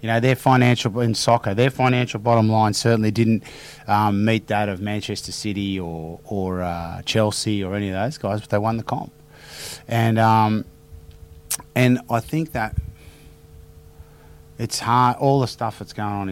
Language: English